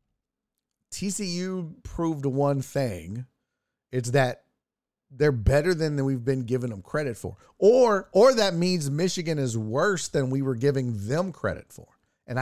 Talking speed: 145 wpm